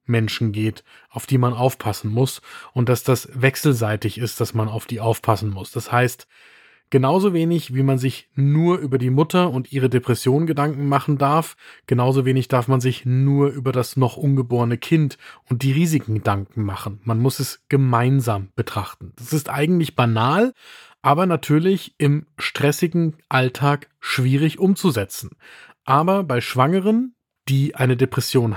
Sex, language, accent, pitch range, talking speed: male, German, German, 120-150 Hz, 155 wpm